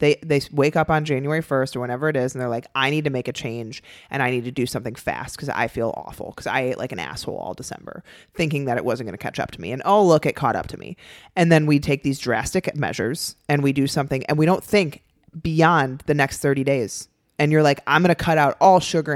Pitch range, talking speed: 135-165 Hz, 275 wpm